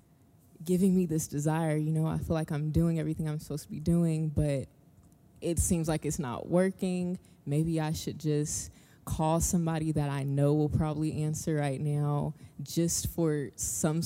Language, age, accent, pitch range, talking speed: English, 20-39, American, 145-170 Hz, 175 wpm